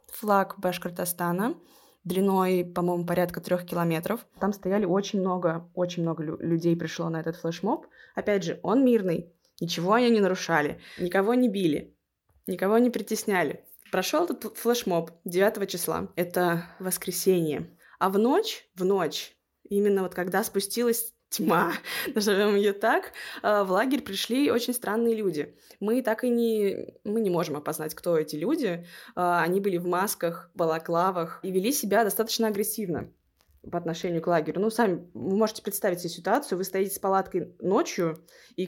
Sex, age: female, 20-39